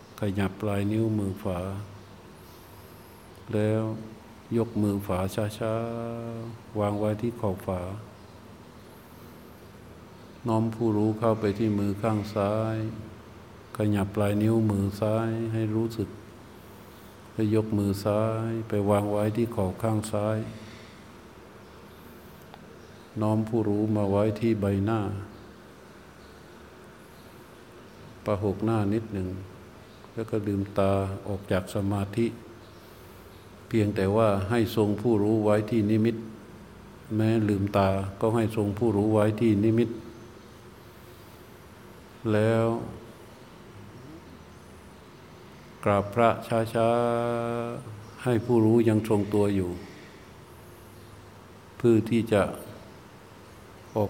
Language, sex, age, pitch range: Thai, male, 60-79, 100-115 Hz